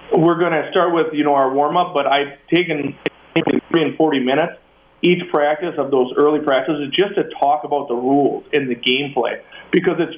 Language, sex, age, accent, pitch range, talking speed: English, male, 40-59, American, 135-155 Hz, 195 wpm